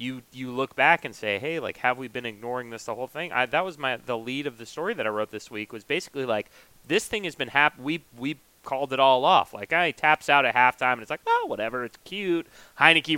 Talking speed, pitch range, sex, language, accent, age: 265 wpm, 135-180 Hz, male, English, American, 30-49